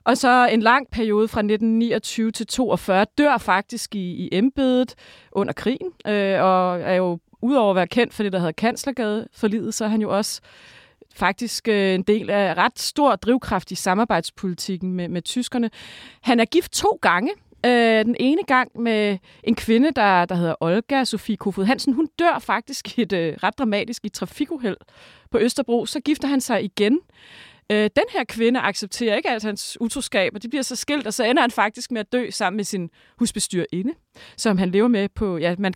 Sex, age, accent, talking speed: female, 30-49, native, 195 wpm